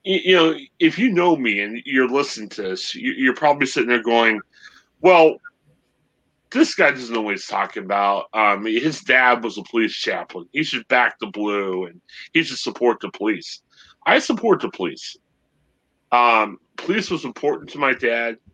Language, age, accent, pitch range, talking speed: English, 30-49, American, 110-160 Hz, 175 wpm